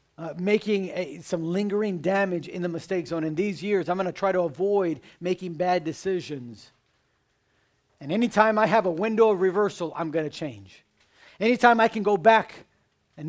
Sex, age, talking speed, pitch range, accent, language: male, 50-69, 175 wpm, 135-180 Hz, American, English